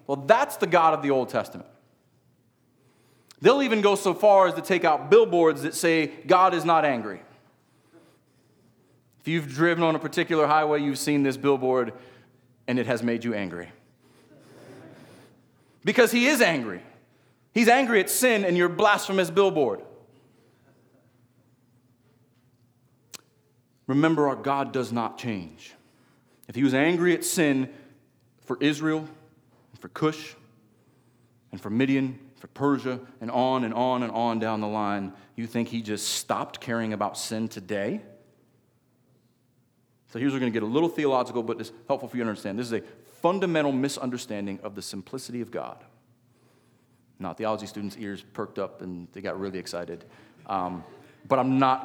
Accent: American